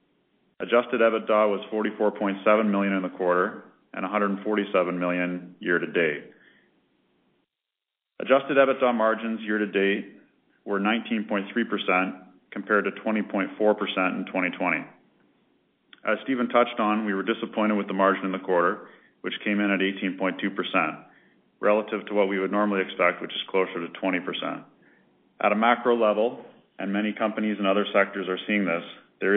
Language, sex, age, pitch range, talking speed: English, male, 40-59, 95-105 Hz, 135 wpm